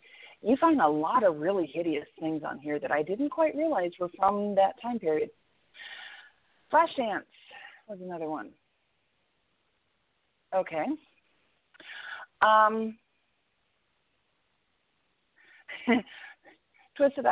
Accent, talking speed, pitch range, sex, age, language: American, 95 wpm, 185-270 Hz, female, 40-59, English